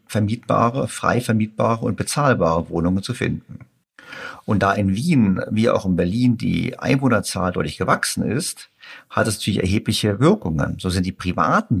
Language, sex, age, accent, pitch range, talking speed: German, male, 50-69, German, 90-125 Hz, 155 wpm